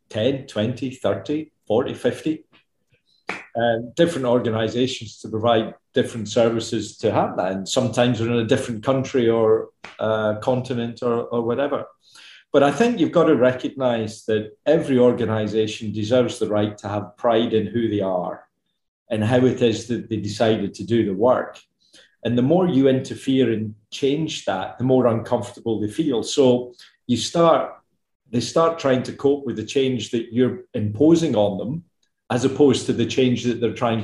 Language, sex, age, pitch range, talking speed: English, male, 40-59, 110-130 Hz, 165 wpm